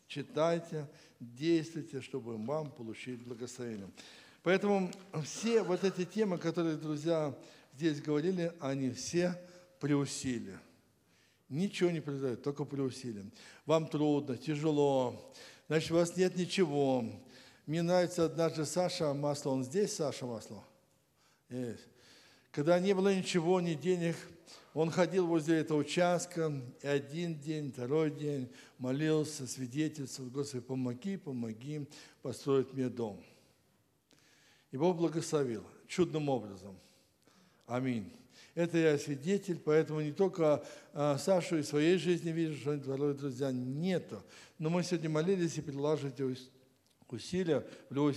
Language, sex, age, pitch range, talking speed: Russian, male, 60-79, 130-170 Hz, 120 wpm